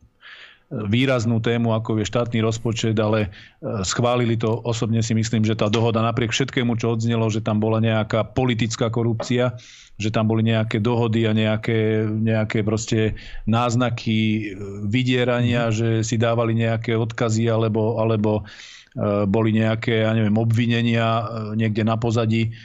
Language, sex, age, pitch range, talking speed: Slovak, male, 40-59, 110-115 Hz, 135 wpm